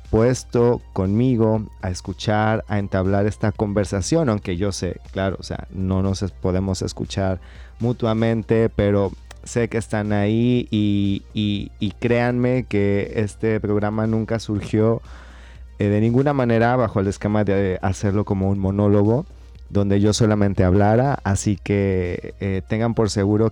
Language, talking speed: Spanish, 140 wpm